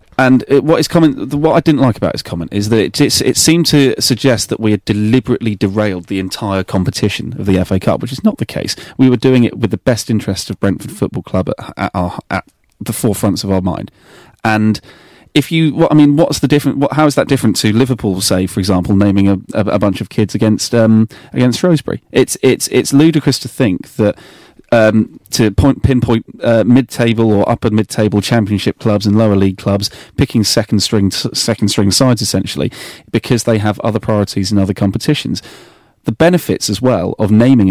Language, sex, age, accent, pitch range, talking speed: English, male, 30-49, British, 100-130 Hz, 200 wpm